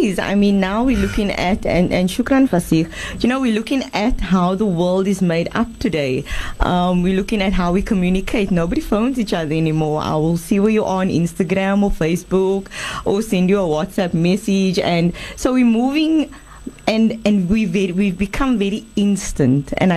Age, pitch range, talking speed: 20-39, 170-215 Hz, 185 wpm